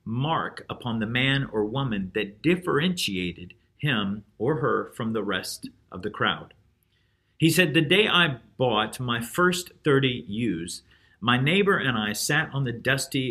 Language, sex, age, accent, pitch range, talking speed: English, male, 50-69, American, 105-135 Hz, 160 wpm